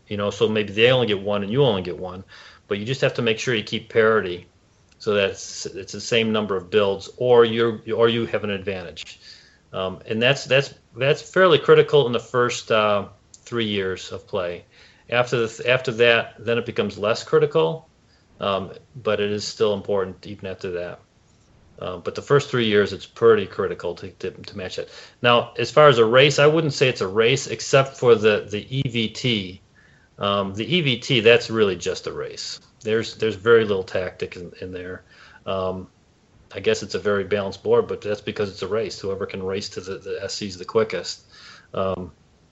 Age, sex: 40-59, male